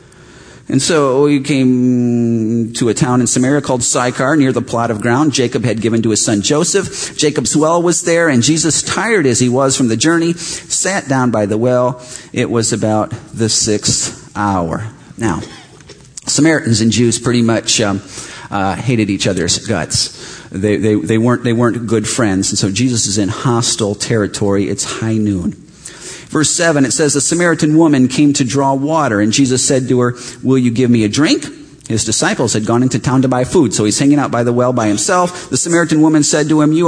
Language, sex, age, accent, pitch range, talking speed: English, male, 40-59, American, 115-155 Hz, 200 wpm